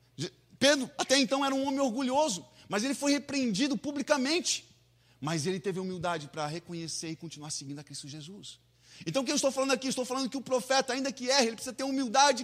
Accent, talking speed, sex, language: Brazilian, 205 wpm, male, Portuguese